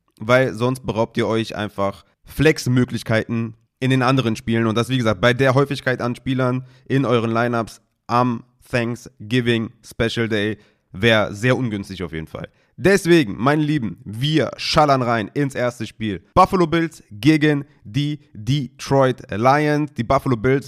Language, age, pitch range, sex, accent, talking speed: German, 30-49, 115-140 Hz, male, German, 150 wpm